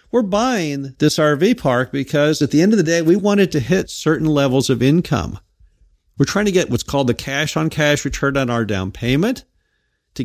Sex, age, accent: male, 50-69, American